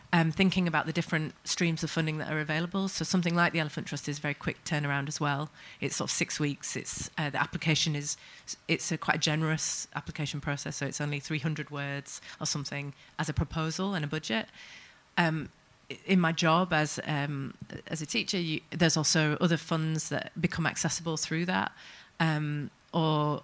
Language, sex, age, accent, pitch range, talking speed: English, female, 30-49, British, 145-165 Hz, 190 wpm